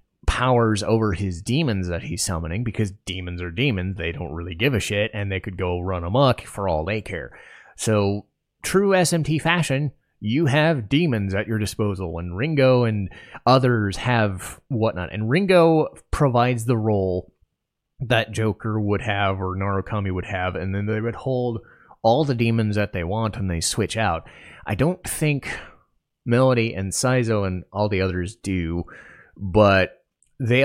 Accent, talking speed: American, 165 wpm